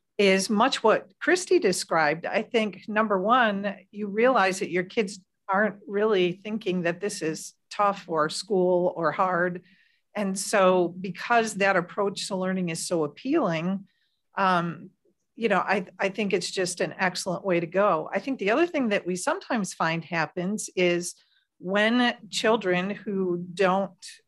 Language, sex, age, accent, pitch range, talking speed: English, female, 50-69, American, 175-205 Hz, 155 wpm